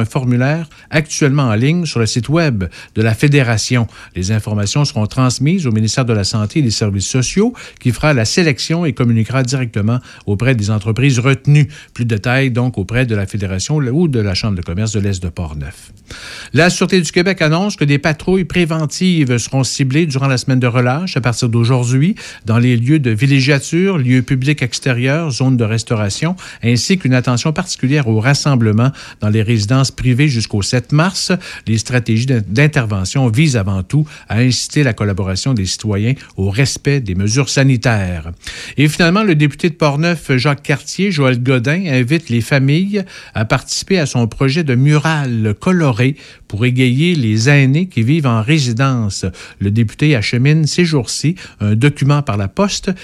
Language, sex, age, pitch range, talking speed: French, male, 50-69, 115-150 Hz, 175 wpm